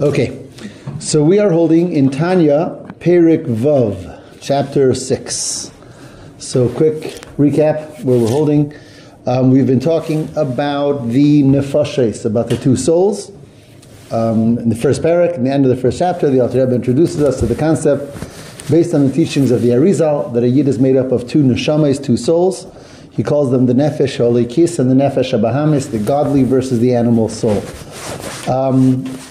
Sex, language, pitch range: male, English, 125-155 Hz